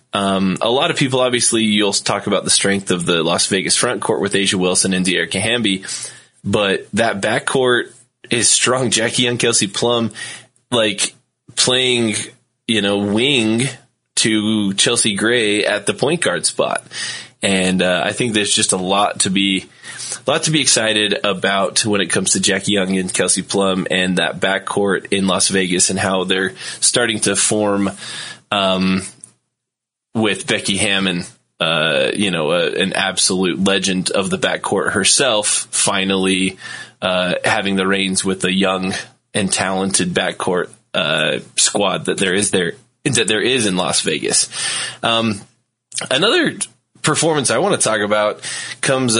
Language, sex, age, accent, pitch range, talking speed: English, male, 20-39, American, 95-120 Hz, 160 wpm